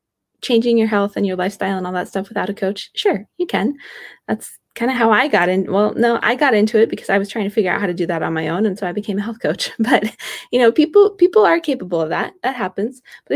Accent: American